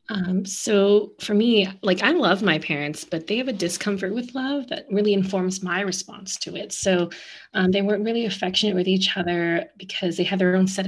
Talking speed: 210 wpm